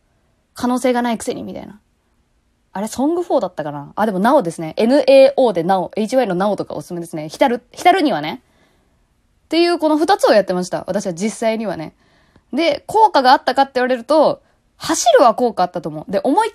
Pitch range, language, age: 195-310 Hz, Japanese, 20-39